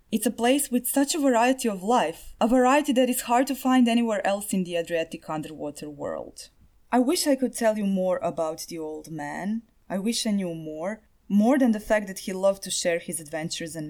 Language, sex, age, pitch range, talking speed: English, female, 20-39, 170-240 Hz, 220 wpm